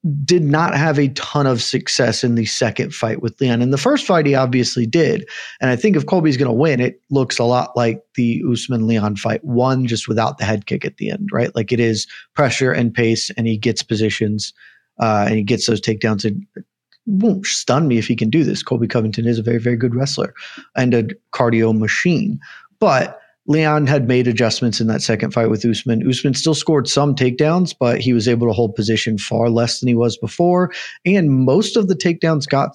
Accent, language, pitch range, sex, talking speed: American, English, 115-145 Hz, male, 220 wpm